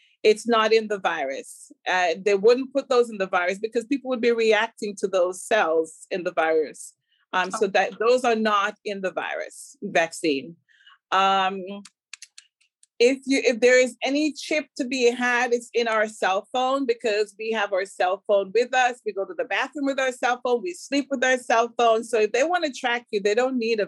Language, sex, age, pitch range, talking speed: English, female, 30-49, 215-265 Hz, 210 wpm